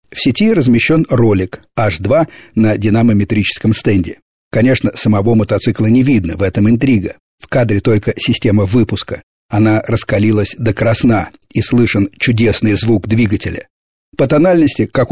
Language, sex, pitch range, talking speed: Russian, male, 105-125 Hz, 130 wpm